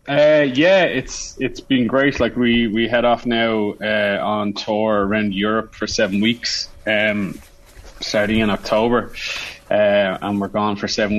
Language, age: English, 20-39